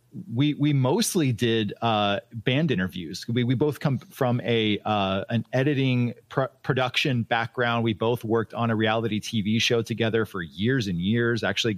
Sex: male